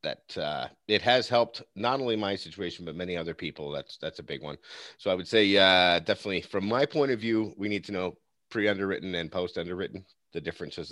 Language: English